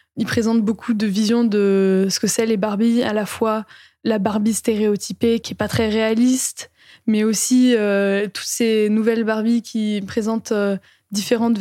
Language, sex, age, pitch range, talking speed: French, female, 20-39, 205-235 Hz, 170 wpm